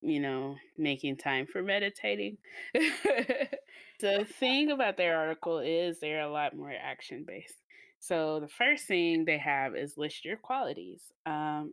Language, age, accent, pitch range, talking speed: English, 20-39, American, 140-185 Hz, 145 wpm